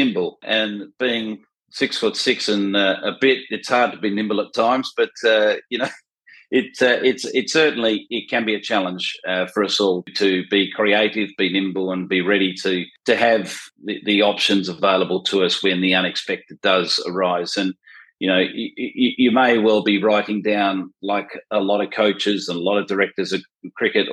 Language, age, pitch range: English, 40-59, 95-110 Hz